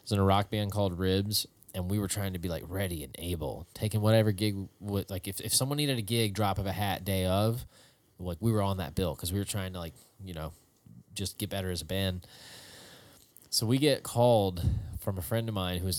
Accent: American